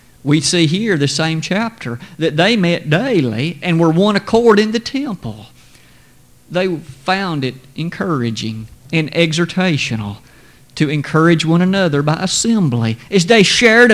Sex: male